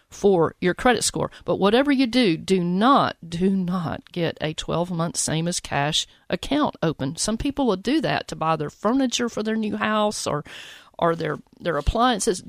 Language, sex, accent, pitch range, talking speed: English, female, American, 170-215 Hz, 185 wpm